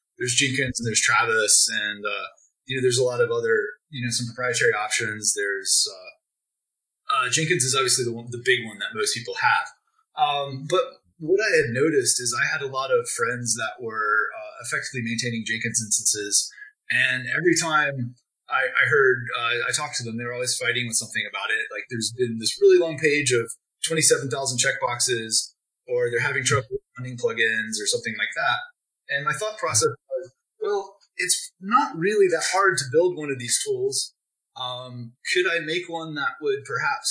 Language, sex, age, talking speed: English, male, 20-39, 190 wpm